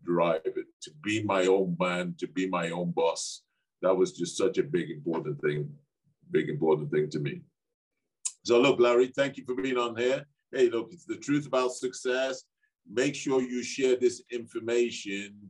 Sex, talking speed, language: male, 180 wpm, English